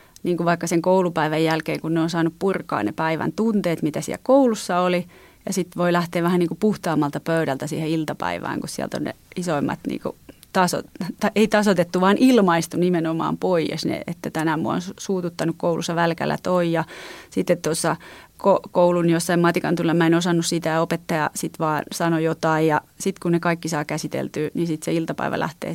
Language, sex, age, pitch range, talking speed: Finnish, female, 30-49, 165-205 Hz, 180 wpm